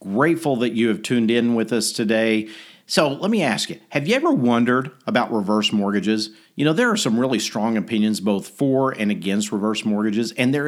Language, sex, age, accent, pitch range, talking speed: English, male, 50-69, American, 105-135 Hz, 210 wpm